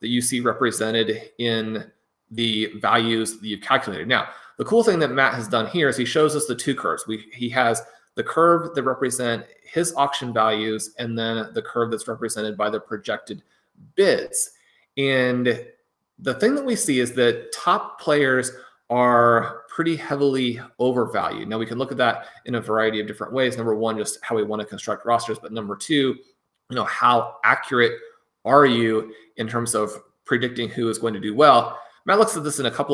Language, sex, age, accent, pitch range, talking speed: English, male, 30-49, American, 115-140 Hz, 190 wpm